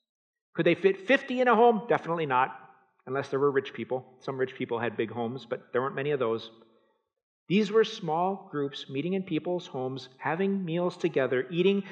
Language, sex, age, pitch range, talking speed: English, male, 50-69, 130-195 Hz, 190 wpm